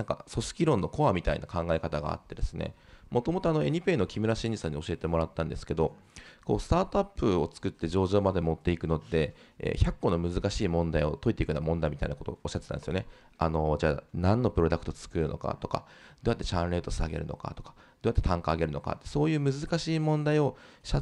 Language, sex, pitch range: Japanese, male, 85-135 Hz